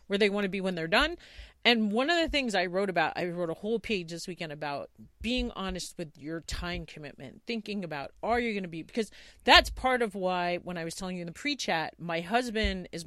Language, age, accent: English, 40-59, American